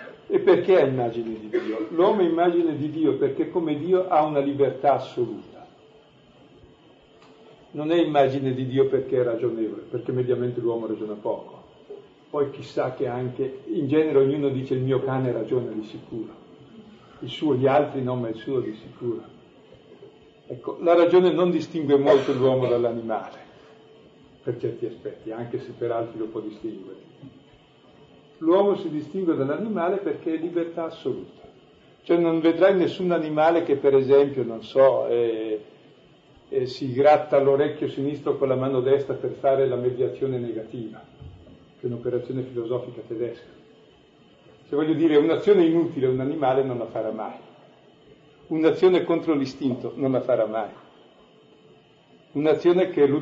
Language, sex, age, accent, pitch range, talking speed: Italian, male, 50-69, native, 130-170 Hz, 150 wpm